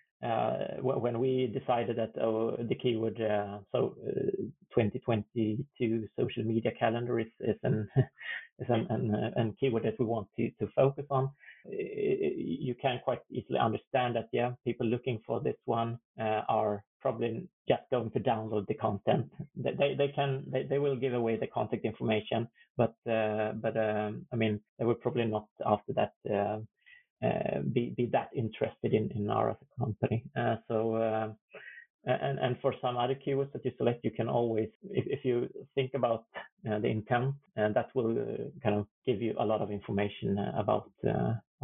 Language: English